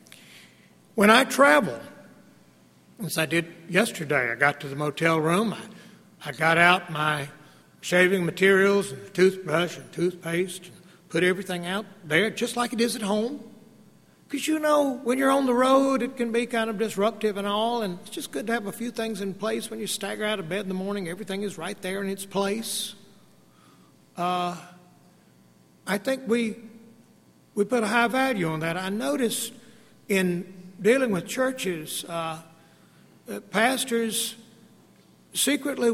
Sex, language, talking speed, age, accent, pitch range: male, English, 165 wpm, 60-79, American, 180-225 Hz